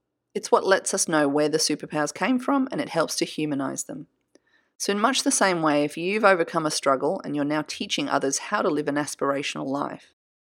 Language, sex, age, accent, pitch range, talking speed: English, female, 30-49, Australian, 150-220 Hz, 220 wpm